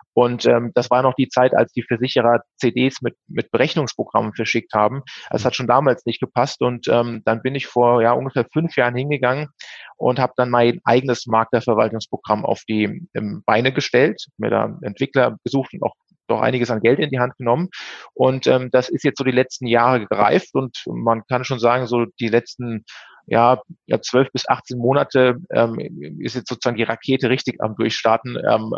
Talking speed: 190 wpm